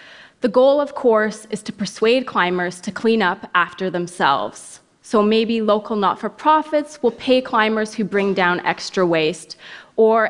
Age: 20-39